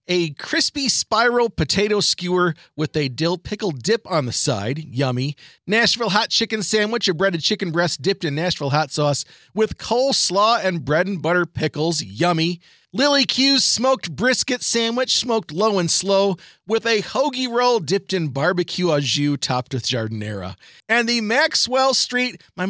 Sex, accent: male, American